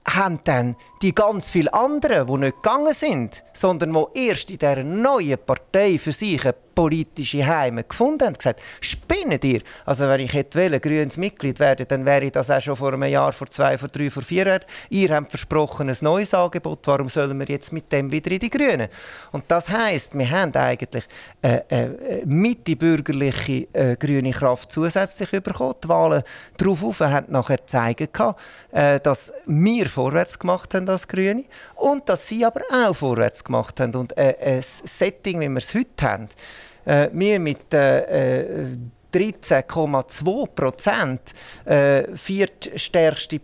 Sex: male